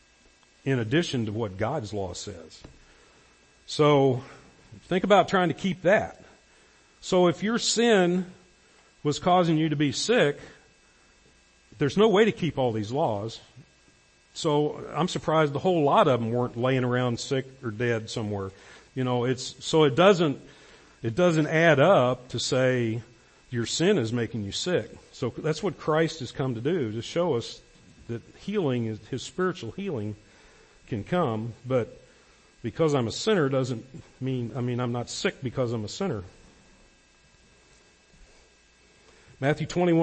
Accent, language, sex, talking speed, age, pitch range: American, English, male, 150 wpm, 50-69, 110-150 Hz